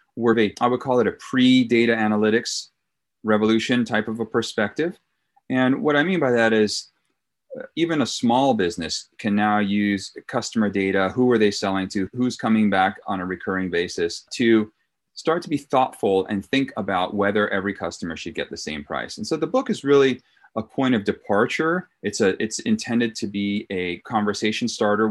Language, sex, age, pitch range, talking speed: English, male, 30-49, 100-125 Hz, 175 wpm